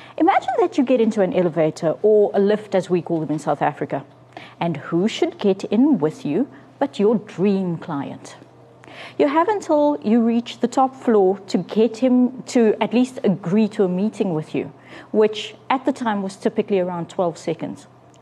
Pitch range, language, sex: 185-255 Hz, English, female